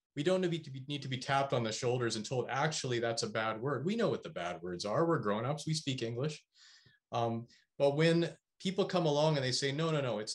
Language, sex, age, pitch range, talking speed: English, male, 30-49, 115-155 Hz, 240 wpm